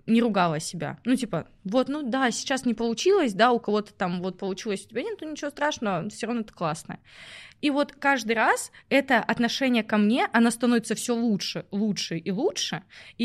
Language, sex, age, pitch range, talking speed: Russian, female, 20-39, 195-235 Hz, 190 wpm